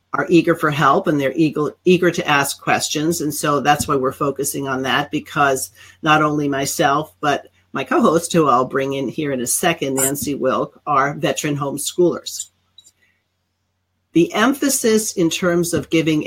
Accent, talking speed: American, 165 wpm